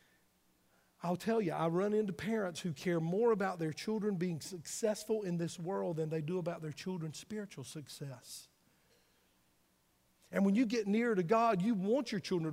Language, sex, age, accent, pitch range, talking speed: English, male, 50-69, American, 155-210 Hz, 175 wpm